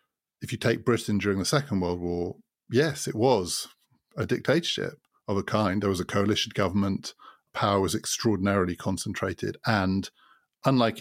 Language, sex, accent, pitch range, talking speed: English, male, British, 100-120 Hz, 155 wpm